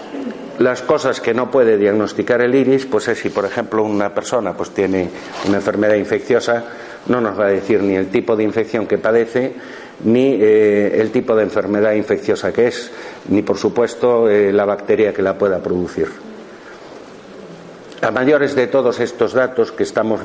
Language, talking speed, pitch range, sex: Spanish, 175 wpm, 100-120 Hz, male